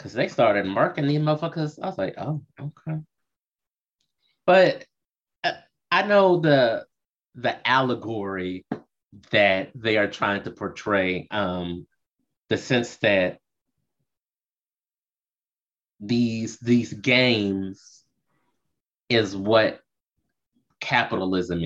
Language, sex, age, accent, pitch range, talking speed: English, male, 30-49, American, 100-135 Hz, 95 wpm